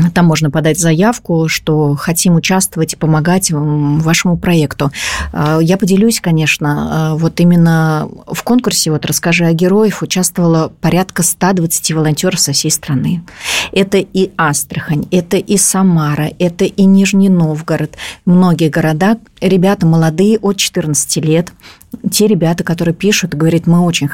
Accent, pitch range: native, 155-185 Hz